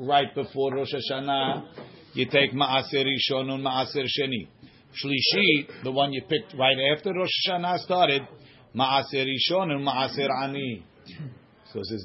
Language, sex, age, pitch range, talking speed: English, male, 50-69, 130-150 Hz, 140 wpm